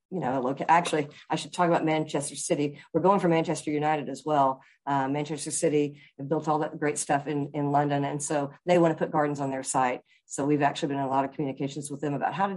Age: 50-69